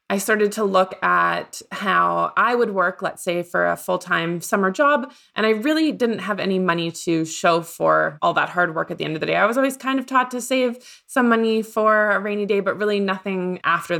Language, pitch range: English, 170-215 Hz